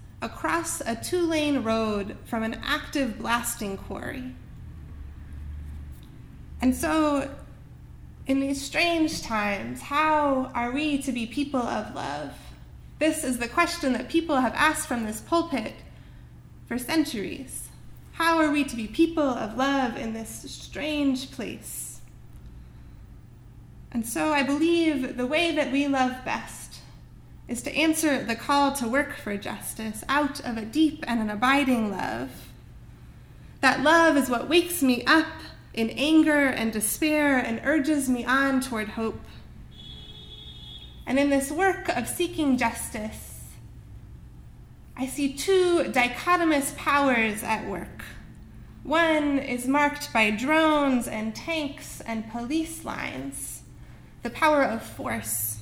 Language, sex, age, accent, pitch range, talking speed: English, female, 20-39, American, 225-300 Hz, 130 wpm